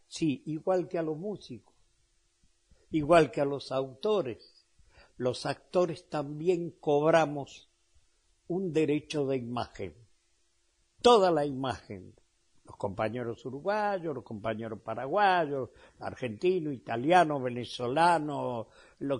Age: 60-79